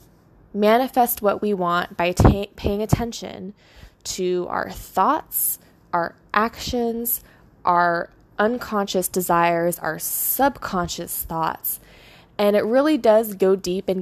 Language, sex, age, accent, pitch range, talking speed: English, female, 20-39, American, 185-220 Hz, 105 wpm